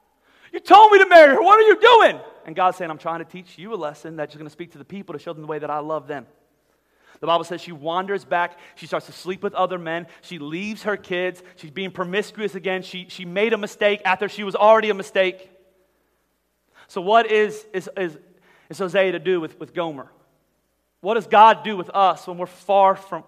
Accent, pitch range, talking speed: American, 175-230 Hz, 235 wpm